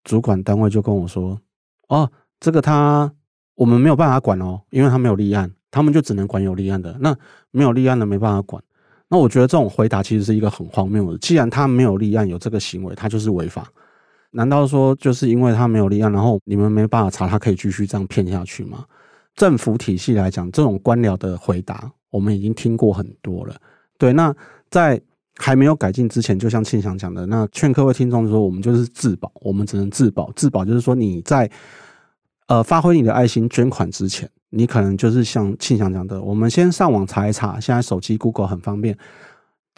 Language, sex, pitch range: Chinese, male, 100-125 Hz